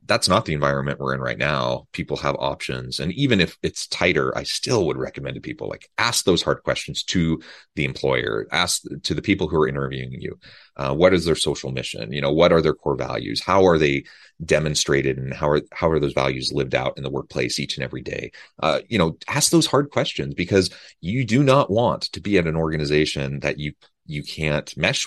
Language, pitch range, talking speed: English, 75-95 Hz, 225 wpm